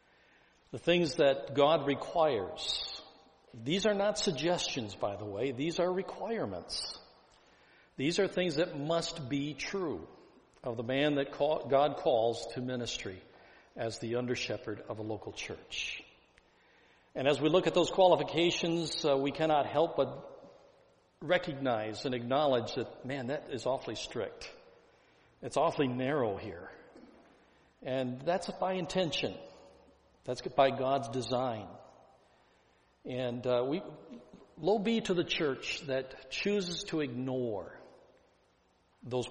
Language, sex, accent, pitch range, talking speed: English, male, American, 125-165 Hz, 125 wpm